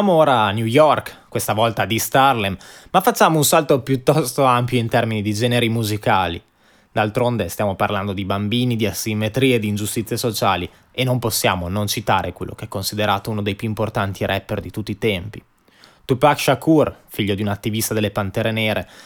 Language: Italian